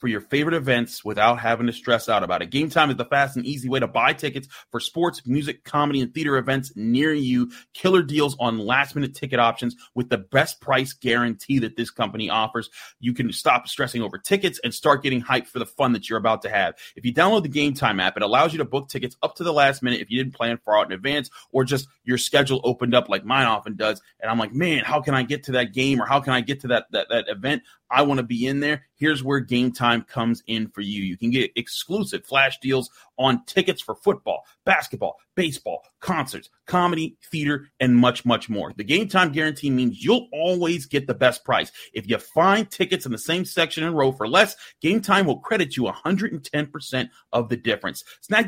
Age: 30-49